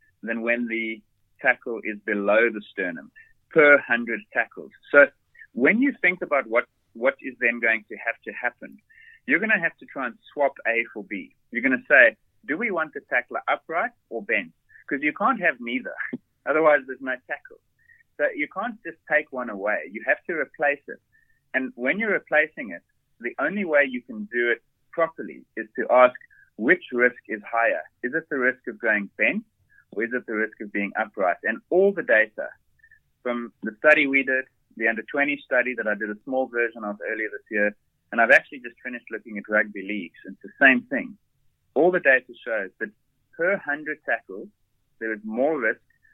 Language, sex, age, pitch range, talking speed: English, male, 30-49, 110-155 Hz, 200 wpm